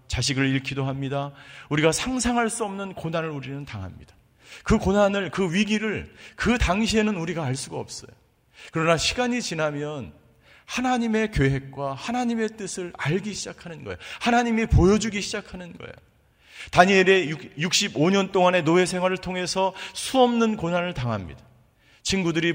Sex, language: male, Korean